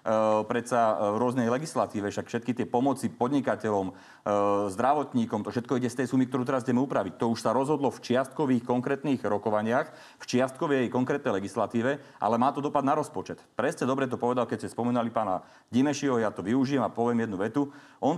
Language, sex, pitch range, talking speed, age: Slovak, male, 110-135 Hz, 180 wpm, 30-49